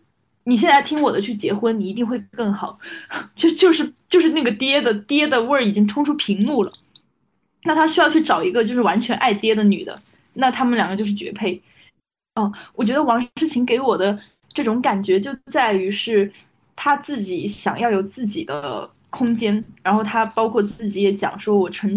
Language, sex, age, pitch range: Chinese, female, 20-39, 200-265 Hz